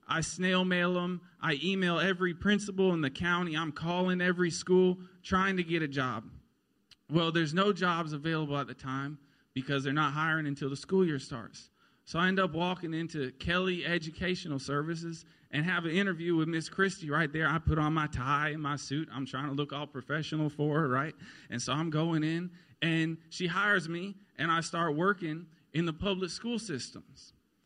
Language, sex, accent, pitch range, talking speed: English, male, American, 150-185 Hz, 195 wpm